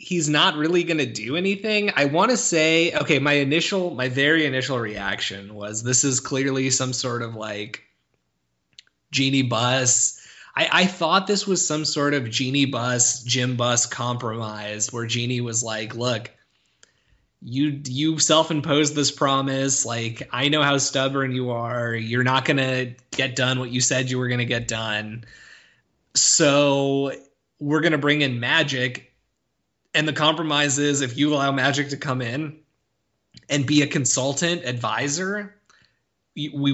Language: English